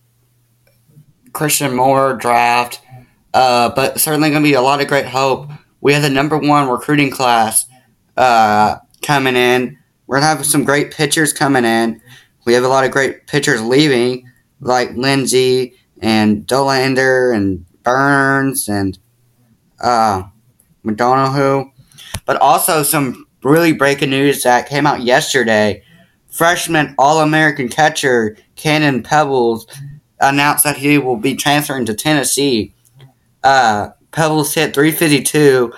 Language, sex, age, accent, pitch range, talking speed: English, male, 20-39, American, 120-145 Hz, 130 wpm